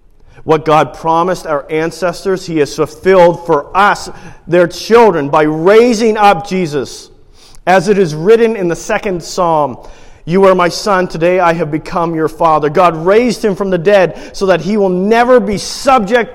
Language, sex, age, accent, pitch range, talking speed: English, male, 40-59, American, 160-205 Hz, 175 wpm